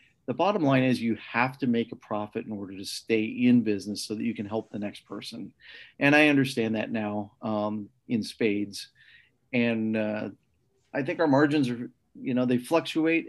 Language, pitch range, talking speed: English, 110-125 Hz, 195 wpm